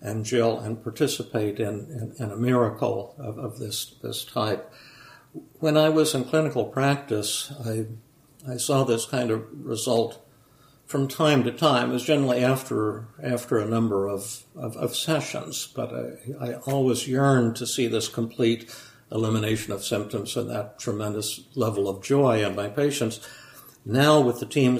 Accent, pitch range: American, 110-135 Hz